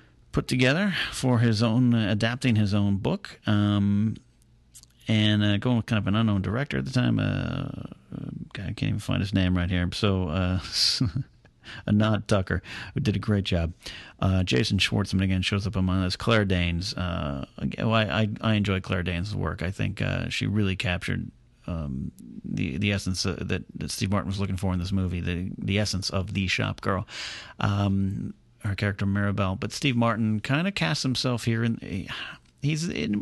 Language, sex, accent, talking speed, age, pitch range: English, male, American, 190 wpm, 40-59, 95-125 Hz